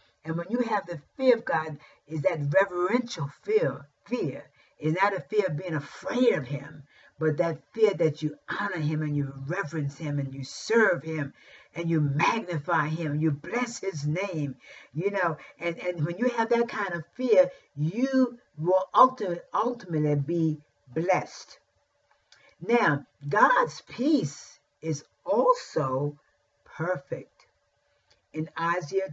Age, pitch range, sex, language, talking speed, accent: 50-69, 145-200 Hz, female, English, 145 wpm, American